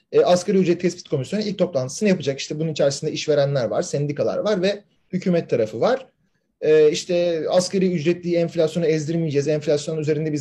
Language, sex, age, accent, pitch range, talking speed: Turkish, male, 40-59, native, 160-210 Hz, 150 wpm